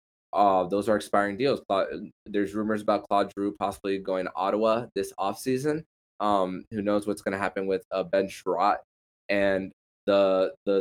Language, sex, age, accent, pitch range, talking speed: English, male, 20-39, American, 95-115 Hz, 180 wpm